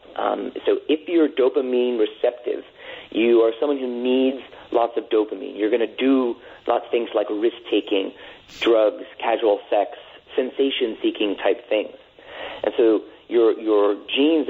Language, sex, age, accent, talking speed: English, male, 40-59, American, 140 wpm